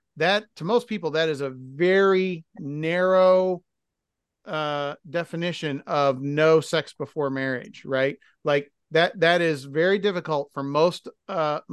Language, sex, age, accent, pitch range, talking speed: English, male, 40-59, American, 145-195 Hz, 135 wpm